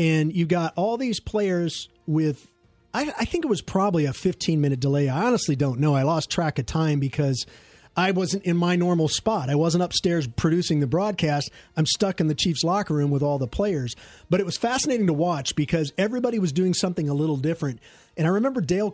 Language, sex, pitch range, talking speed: English, male, 150-195 Hz, 210 wpm